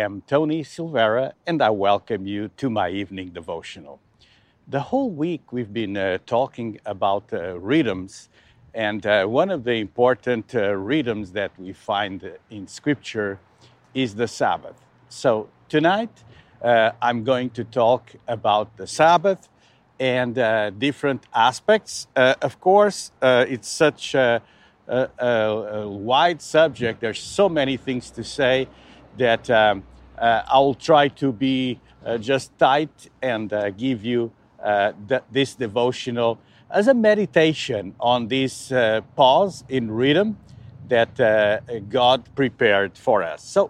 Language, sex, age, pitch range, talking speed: English, male, 50-69, 110-145 Hz, 140 wpm